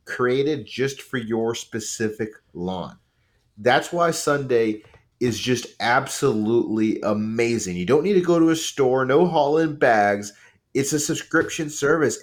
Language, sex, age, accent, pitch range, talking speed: English, male, 30-49, American, 115-155 Hz, 135 wpm